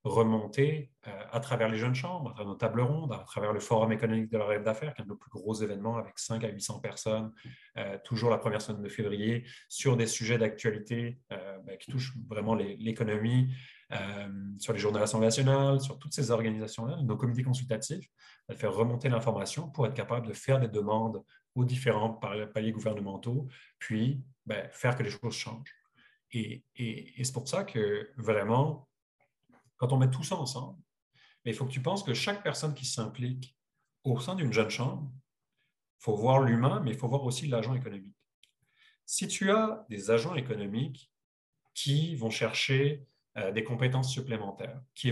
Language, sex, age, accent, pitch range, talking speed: French, male, 40-59, French, 110-135 Hz, 185 wpm